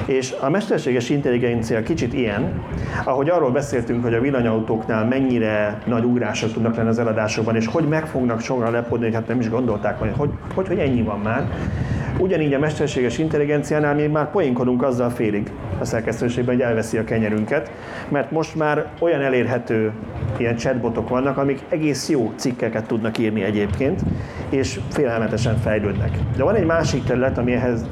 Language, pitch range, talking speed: Hungarian, 110-135 Hz, 160 wpm